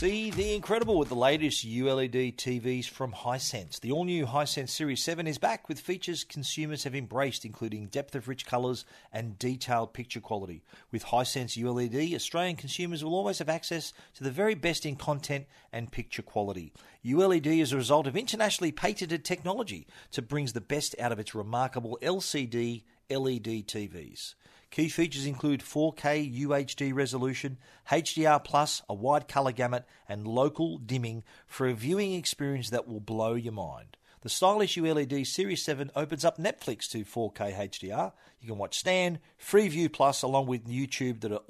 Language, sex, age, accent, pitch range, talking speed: English, male, 40-59, Australian, 120-160 Hz, 160 wpm